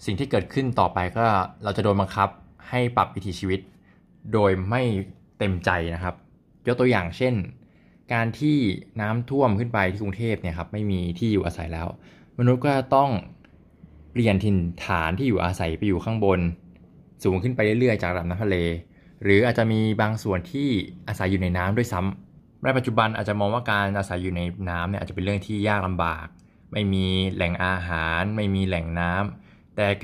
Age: 20-39